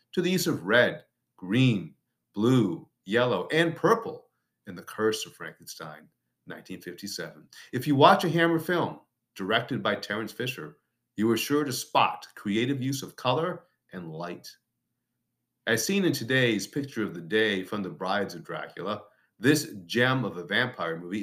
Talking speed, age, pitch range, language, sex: 160 wpm, 50-69, 110-155 Hz, English, male